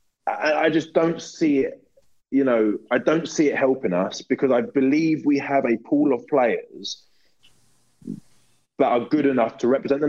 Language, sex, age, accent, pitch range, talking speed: English, male, 20-39, British, 115-150 Hz, 170 wpm